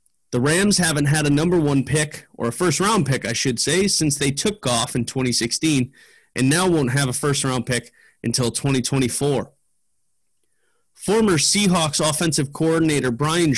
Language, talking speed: English, 155 wpm